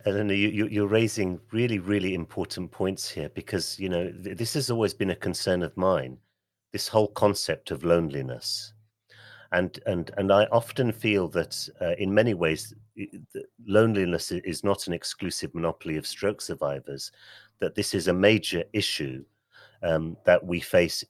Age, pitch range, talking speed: 40-59, 80-105 Hz, 150 wpm